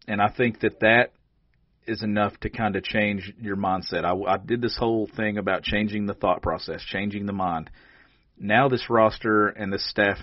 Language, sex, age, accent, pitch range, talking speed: English, male, 40-59, American, 100-115 Hz, 195 wpm